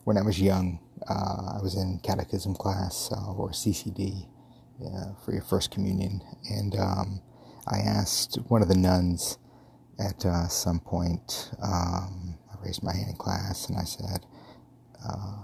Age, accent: 30-49, American